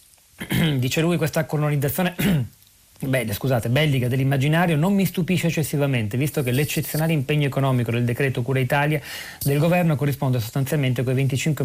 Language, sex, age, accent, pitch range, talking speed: Italian, male, 40-59, native, 125-155 Hz, 145 wpm